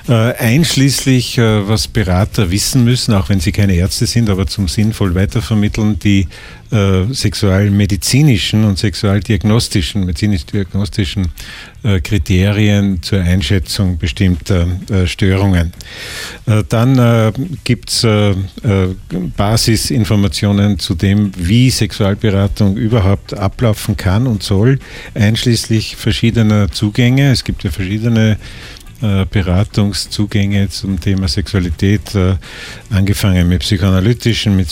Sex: male